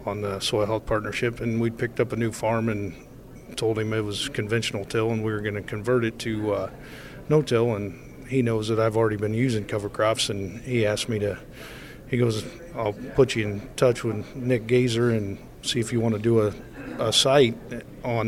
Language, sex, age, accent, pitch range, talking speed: English, male, 40-59, American, 110-125 Hz, 215 wpm